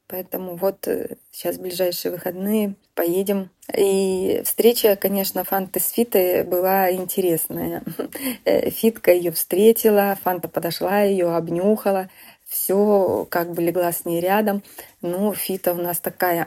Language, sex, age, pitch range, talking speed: Russian, female, 20-39, 165-200 Hz, 120 wpm